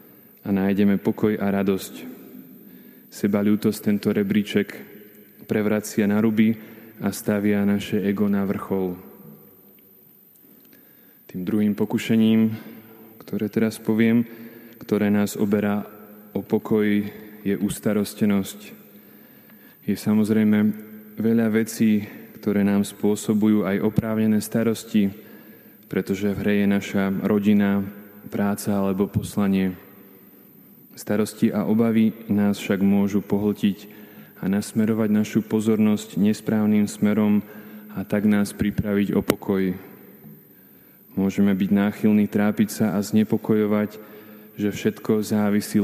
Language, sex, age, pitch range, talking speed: Slovak, male, 20-39, 100-110 Hz, 105 wpm